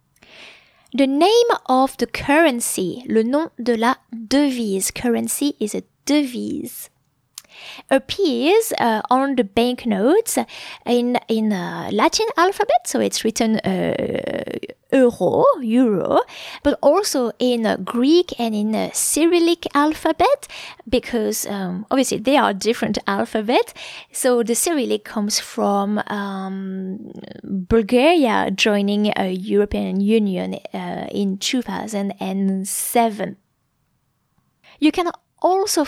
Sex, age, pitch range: female, 20-39, 210-275 Hz